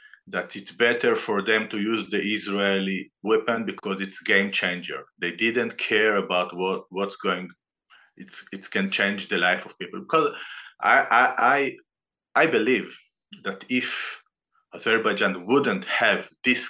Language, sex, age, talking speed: English, male, 50-69, 145 wpm